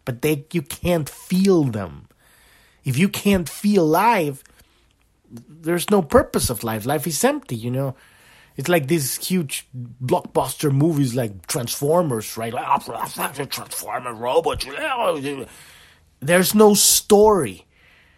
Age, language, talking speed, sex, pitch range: 30-49, English, 120 wpm, male, 125-185 Hz